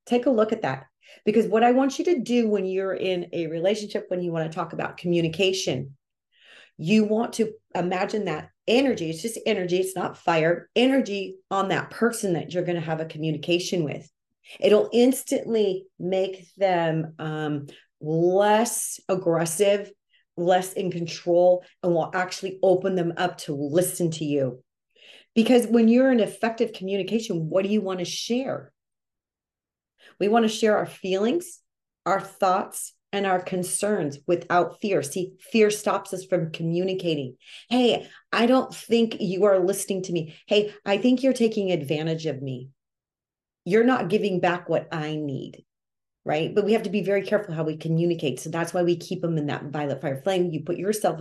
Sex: female